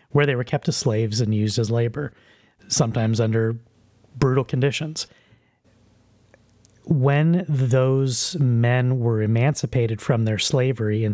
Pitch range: 115-145 Hz